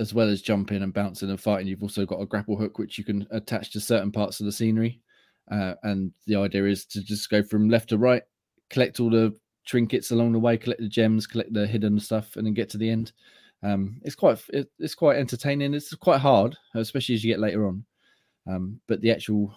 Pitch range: 100-115 Hz